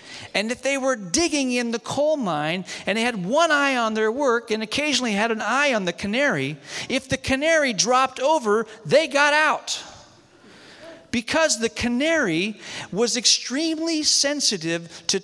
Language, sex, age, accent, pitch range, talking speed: English, male, 40-59, American, 210-275 Hz, 160 wpm